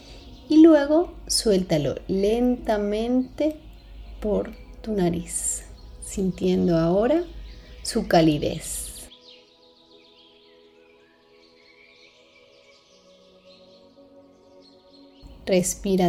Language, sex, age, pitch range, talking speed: Spanish, female, 30-49, 145-235 Hz, 45 wpm